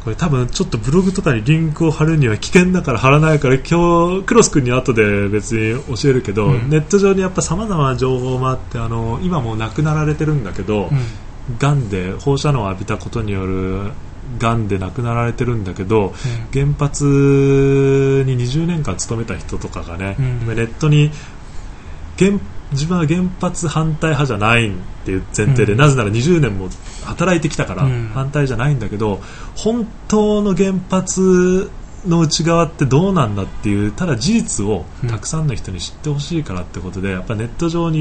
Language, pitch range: Japanese, 105-155 Hz